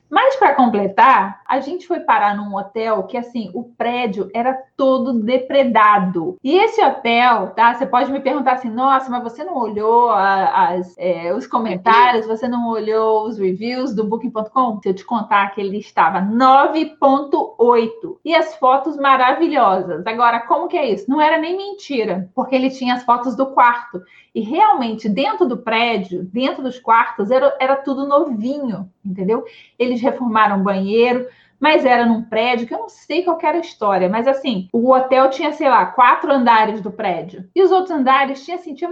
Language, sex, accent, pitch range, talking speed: Portuguese, female, Brazilian, 220-285 Hz, 175 wpm